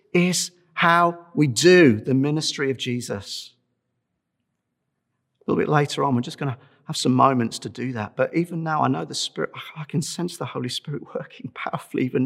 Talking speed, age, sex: 190 wpm, 40-59, male